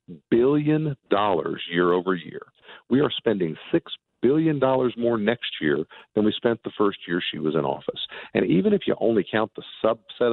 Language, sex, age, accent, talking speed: English, male, 50-69, American, 180 wpm